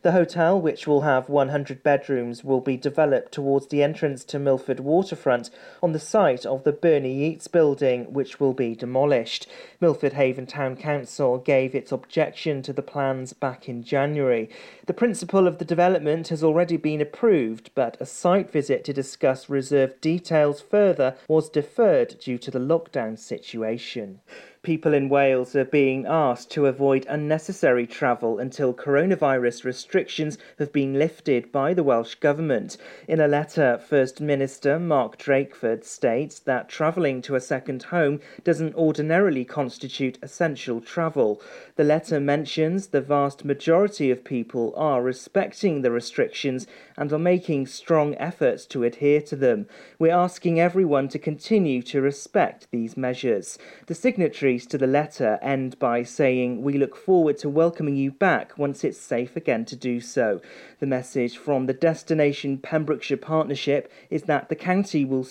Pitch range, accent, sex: 130-160 Hz, British, male